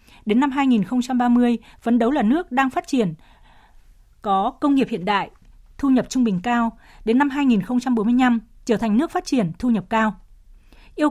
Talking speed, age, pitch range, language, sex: 175 wpm, 20-39, 210-255 Hz, Vietnamese, female